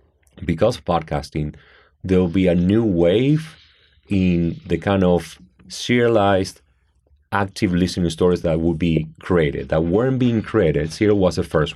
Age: 30-49